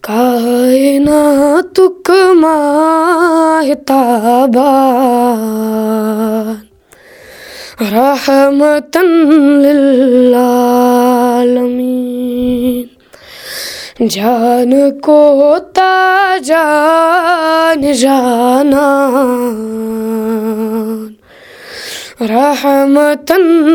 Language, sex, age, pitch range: Urdu, female, 20-39, 250-380 Hz